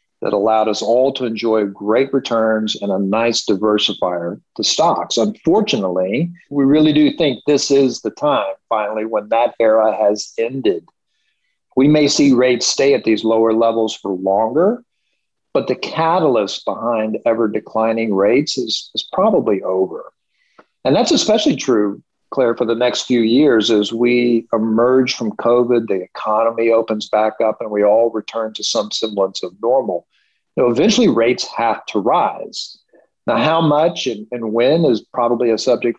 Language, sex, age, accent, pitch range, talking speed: English, male, 50-69, American, 110-130 Hz, 160 wpm